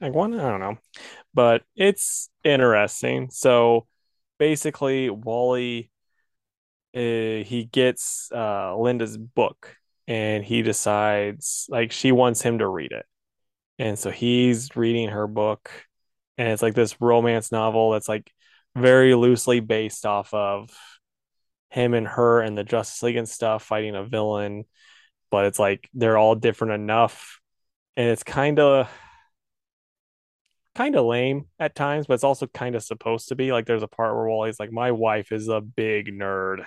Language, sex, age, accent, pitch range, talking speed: English, male, 20-39, American, 110-125 Hz, 155 wpm